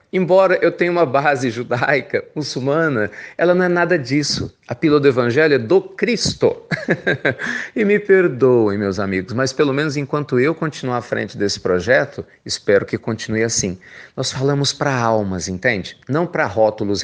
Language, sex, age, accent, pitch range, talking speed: Portuguese, male, 40-59, Brazilian, 110-150 Hz, 160 wpm